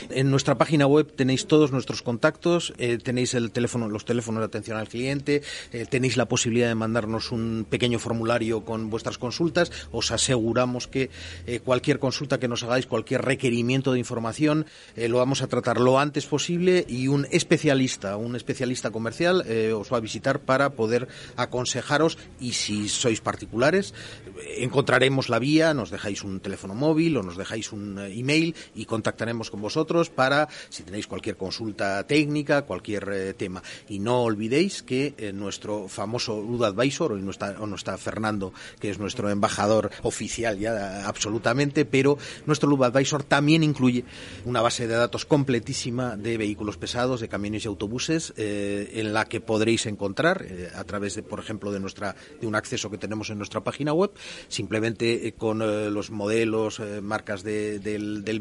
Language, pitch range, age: Spanish, 105-135 Hz, 40-59